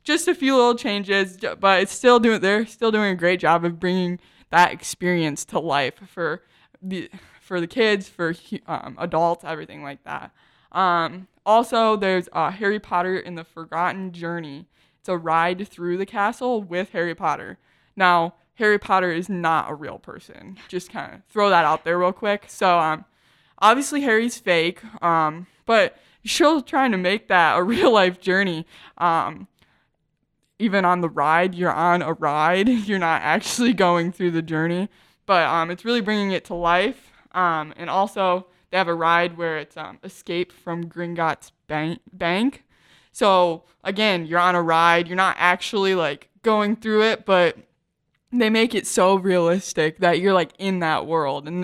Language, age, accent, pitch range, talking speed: English, 20-39, American, 165-200 Hz, 175 wpm